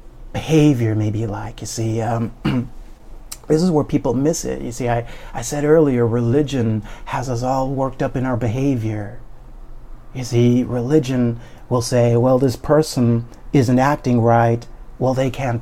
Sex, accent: male, American